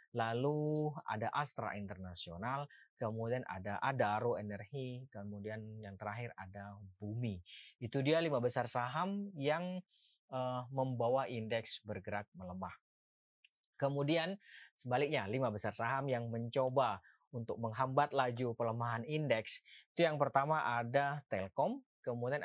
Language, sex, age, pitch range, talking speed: Indonesian, male, 30-49, 105-140 Hz, 110 wpm